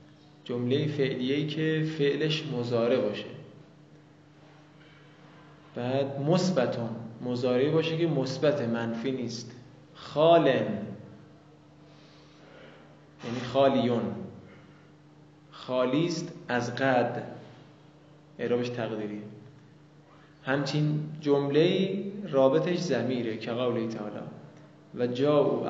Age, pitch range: 20-39, 125-155 Hz